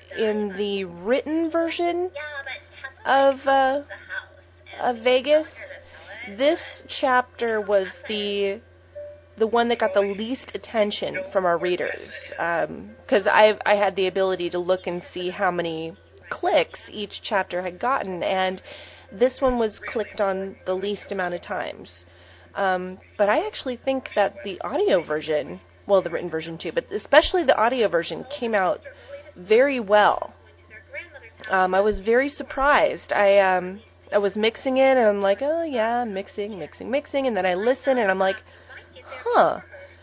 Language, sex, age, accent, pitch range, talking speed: English, female, 30-49, American, 175-255 Hz, 150 wpm